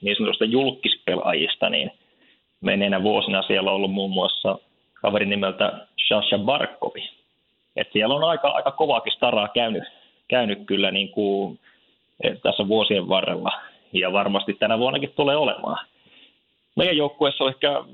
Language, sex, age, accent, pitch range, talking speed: Finnish, male, 30-49, native, 100-120 Hz, 135 wpm